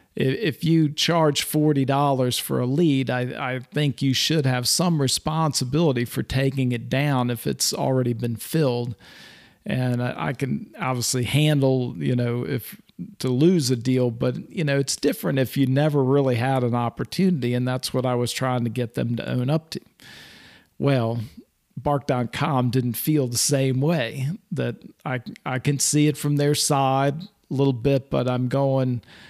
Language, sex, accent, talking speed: English, male, American, 175 wpm